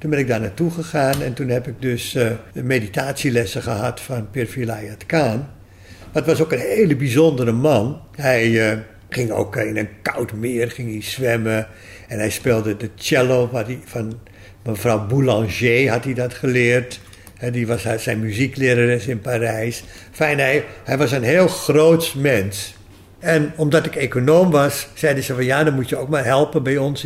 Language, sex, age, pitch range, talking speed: Dutch, male, 60-79, 115-150 Hz, 180 wpm